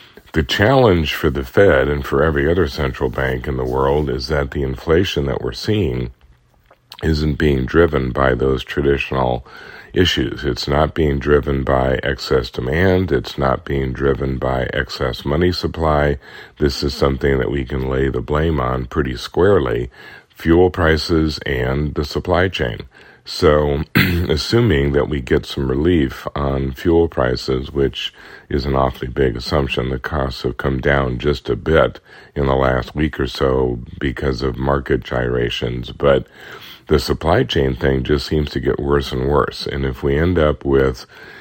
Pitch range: 65-75 Hz